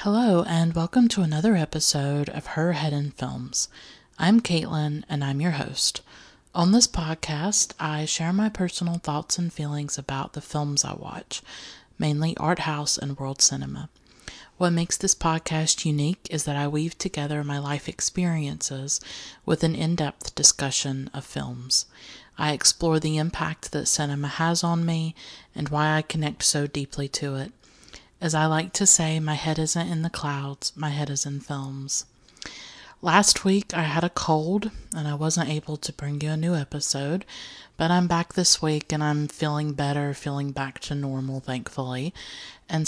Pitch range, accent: 145-170 Hz, American